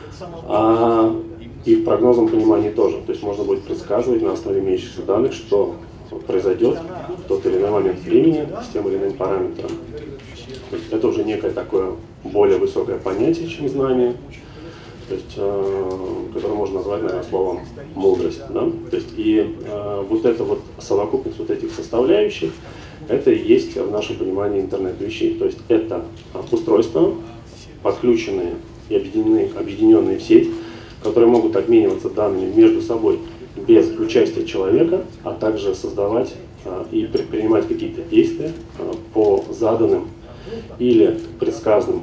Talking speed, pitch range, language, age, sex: 140 wpm, 335-385 Hz, Russian, 30-49, male